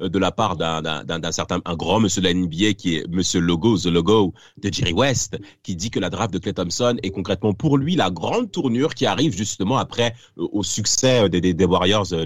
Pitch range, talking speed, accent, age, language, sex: 95-140 Hz, 240 wpm, French, 40-59, French, male